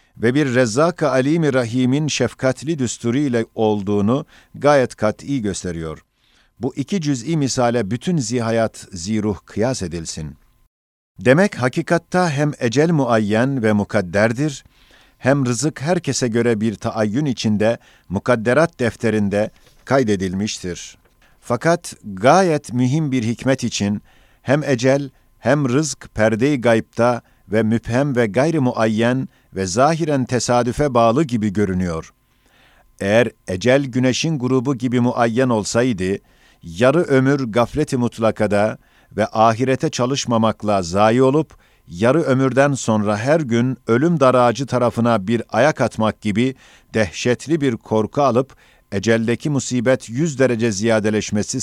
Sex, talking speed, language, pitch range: male, 115 wpm, Turkish, 110-135 Hz